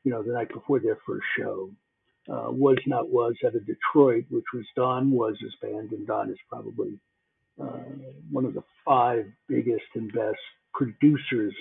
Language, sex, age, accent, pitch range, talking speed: English, male, 60-79, American, 120-155 Hz, 175 wpm